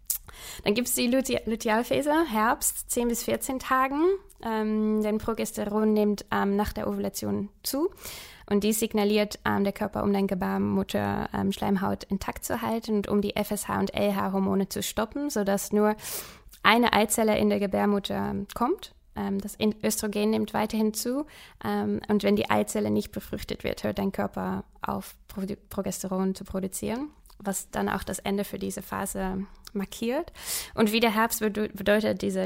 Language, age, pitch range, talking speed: German, 20-39, 195-225 Hz, 165 wpm